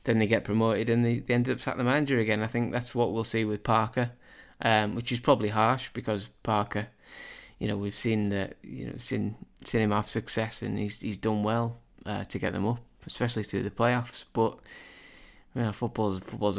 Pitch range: 100-115 Hz